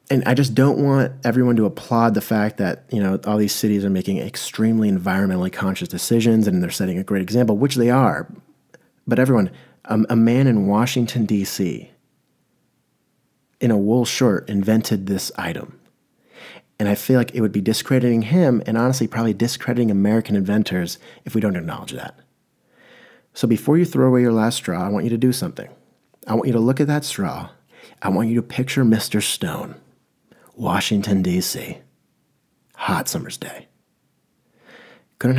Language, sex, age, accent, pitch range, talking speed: English, male, 30-49, American, 105-125 Hz, 170 wpm